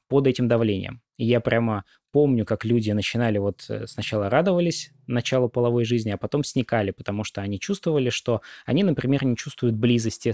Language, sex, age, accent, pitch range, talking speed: Russian, male, 20-39, native, 105-125 Hz, 165 wpm